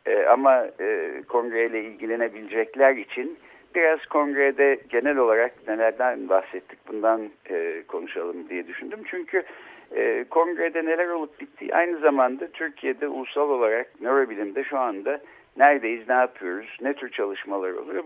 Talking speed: 125 wpm